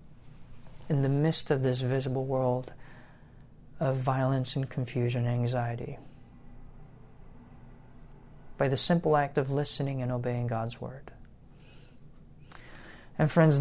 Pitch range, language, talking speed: 125-150 Hz, English, 110 wpm